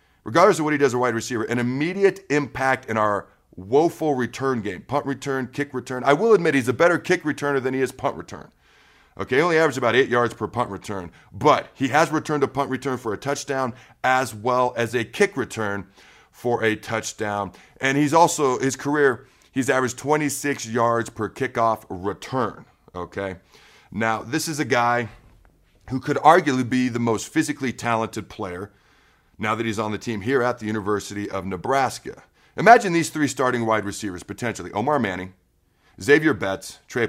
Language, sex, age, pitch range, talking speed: English, male, 40-59, 105-140 Hz, 185 wpm